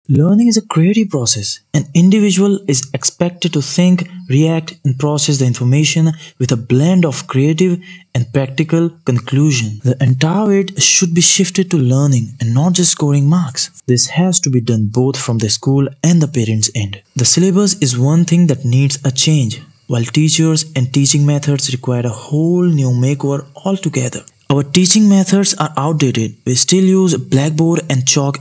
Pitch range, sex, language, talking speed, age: 130-170 Hz, male, Hindi, 170 wpm, 20-39